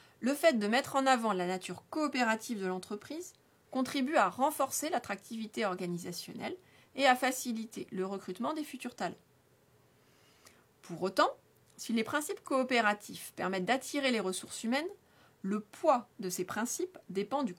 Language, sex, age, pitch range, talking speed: French, female, 30-49, 205-270 Hz, 145 wpm